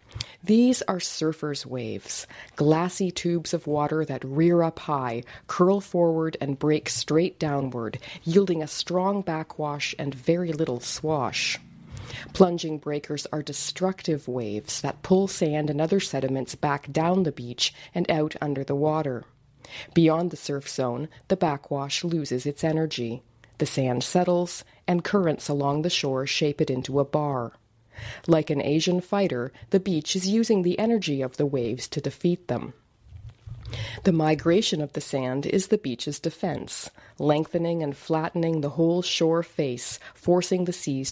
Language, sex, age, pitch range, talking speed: English, female, 40-59, 135-170 Hz, 150 wpm